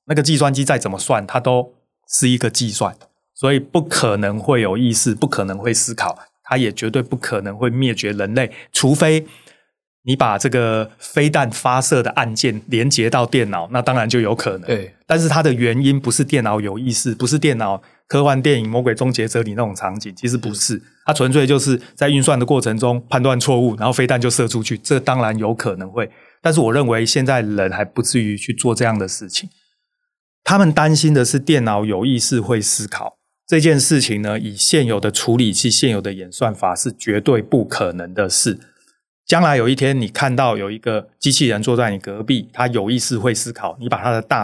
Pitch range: 110-140 Hz